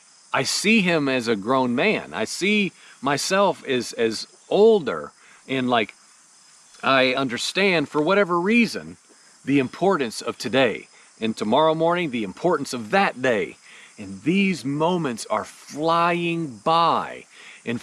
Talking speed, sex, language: 130 wpm, male, English